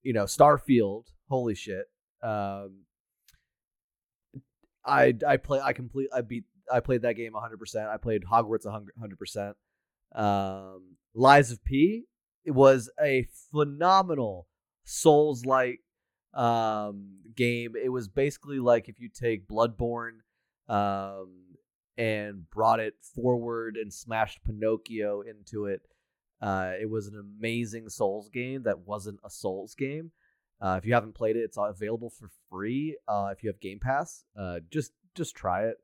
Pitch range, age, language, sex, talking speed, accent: 100-125 Hz, 30-49, English, male, 145 wpm, American